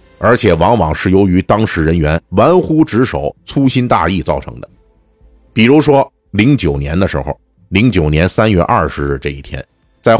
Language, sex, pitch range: Chinese, male, 80-120 Hz